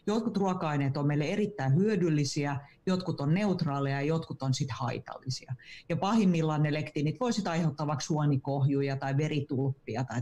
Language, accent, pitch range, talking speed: Finnish, native, 140-175 Hz, 140 wpm